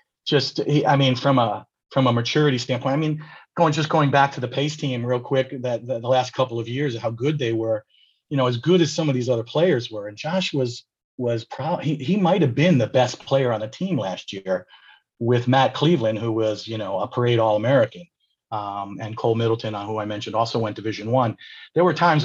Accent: American